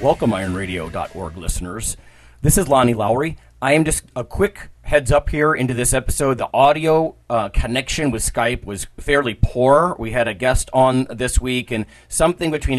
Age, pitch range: 40-59, 100-130 Hz